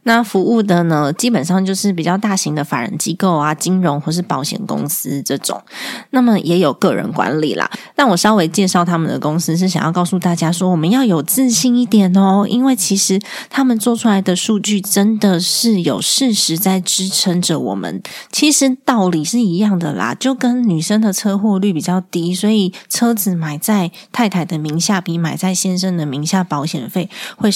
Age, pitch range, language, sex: 20-39, 165-215 Hz, Chinese, female